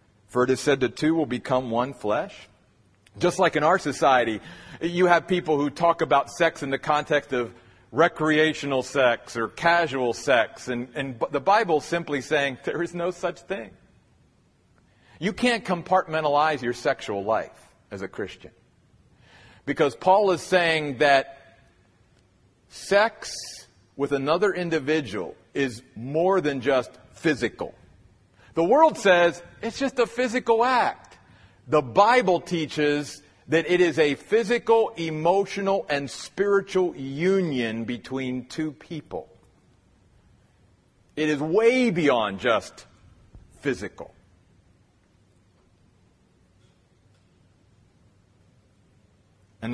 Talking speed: 115 wpm